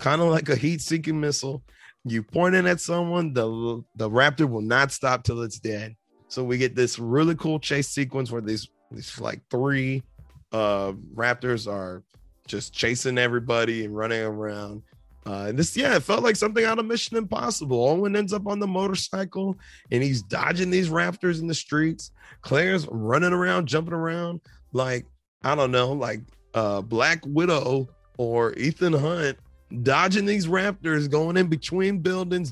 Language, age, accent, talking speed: English, 30-49, American, 170 wpm